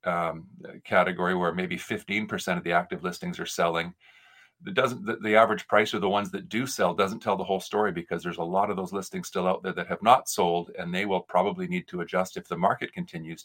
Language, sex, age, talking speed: English, male, 40-59, 230 wpm